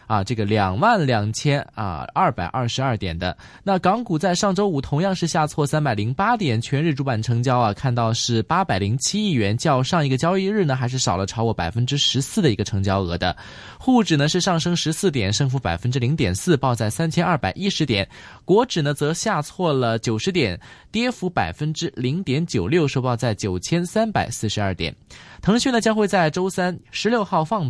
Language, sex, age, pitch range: Chinese, male, 20-39, 120-175 Hz